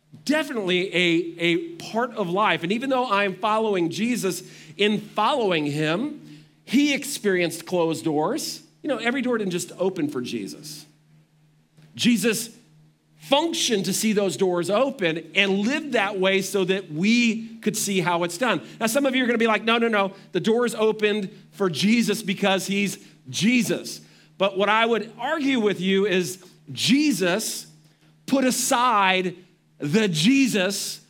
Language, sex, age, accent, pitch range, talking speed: English, male, 40-59, American, 175-230 Hz, 150 wpm